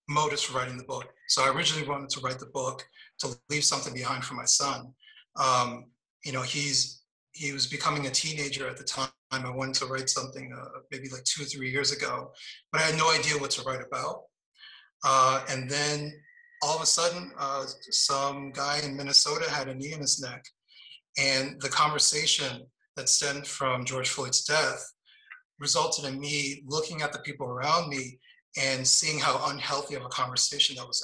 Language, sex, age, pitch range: English, male, 30-49, 130-150 Hz